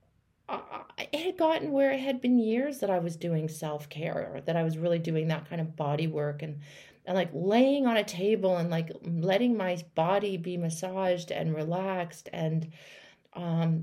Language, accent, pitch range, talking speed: English, American, 160-190 Hz, 180 wpm